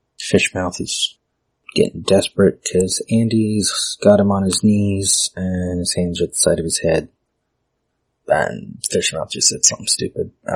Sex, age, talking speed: male, 30-49, 155 wpm